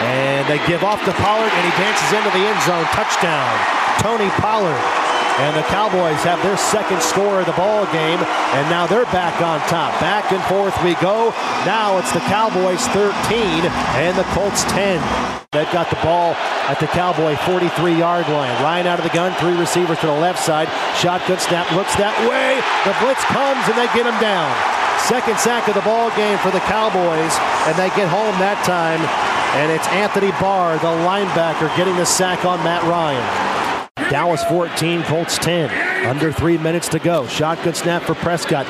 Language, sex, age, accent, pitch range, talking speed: English, male, 40-59, American, 170-245 Hz, 185 wpm